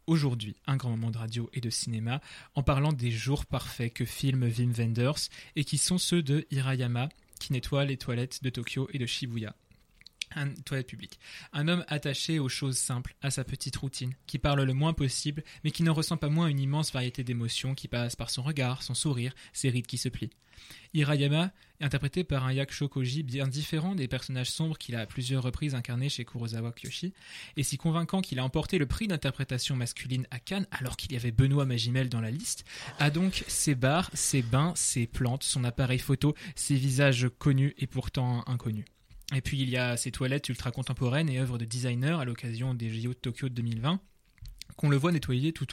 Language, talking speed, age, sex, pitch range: French, 205 wpm, 20-39, male, 125-150 Hz